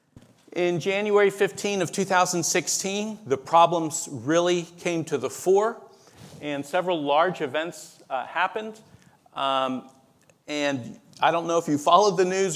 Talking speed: 135 wpm